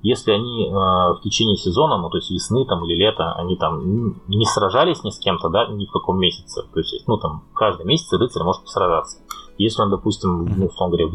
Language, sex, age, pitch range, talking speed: Russian, male, 20-39, 90-110 Hz, 225 wpm